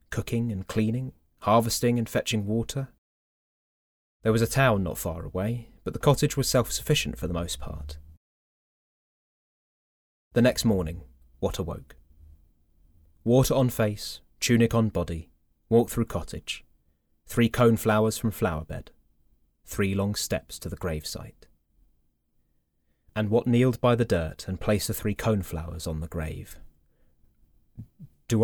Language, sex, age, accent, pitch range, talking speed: English, male, 30-49, British, 75-115 Hz, 135 wpm